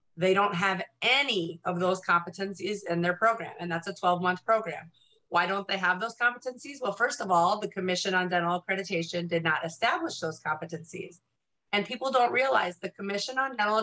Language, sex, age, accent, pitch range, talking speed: English, female, 30-49, American, 175-210 Hz, 190 wpm